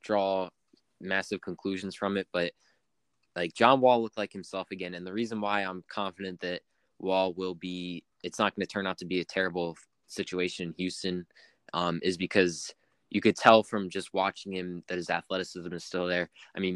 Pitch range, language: 90-100 Hz, English